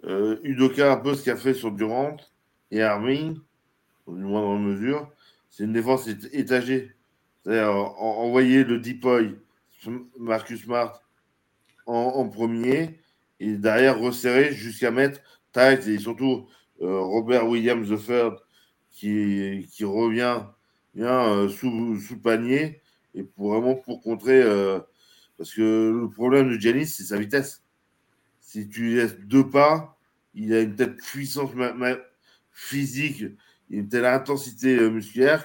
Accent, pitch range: French, 105-130 Hz